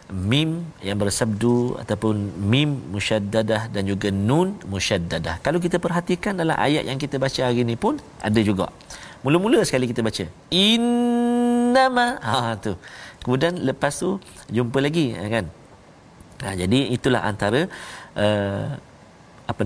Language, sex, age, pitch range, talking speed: Malayalam, male, 50-69, 100-135 Hz, 125 wpm